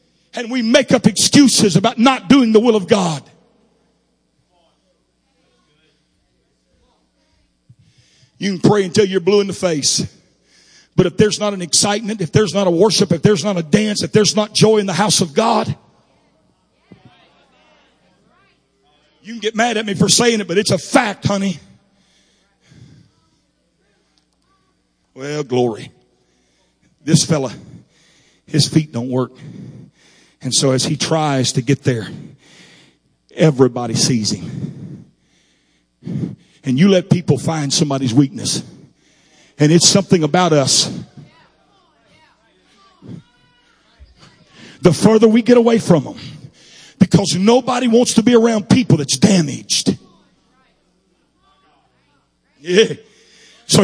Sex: male